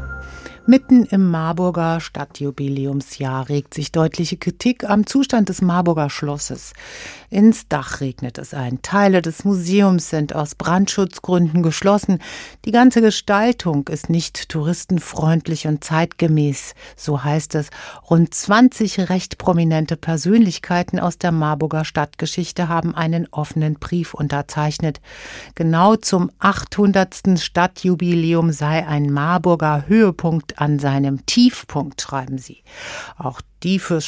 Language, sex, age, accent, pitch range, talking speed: German, female, 50-69, German, 150-190 Hz, 115 wpm